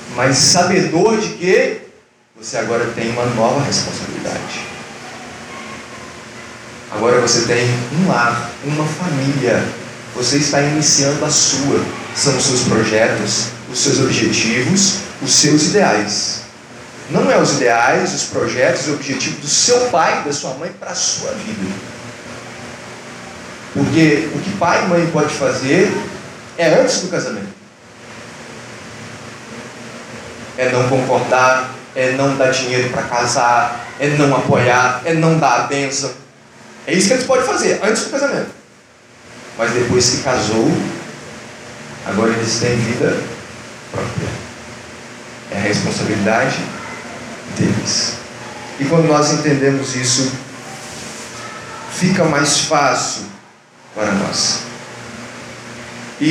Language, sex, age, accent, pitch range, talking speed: Portuguese, male, 30-49, Brazilian, 120-150 Hz, 120 wpm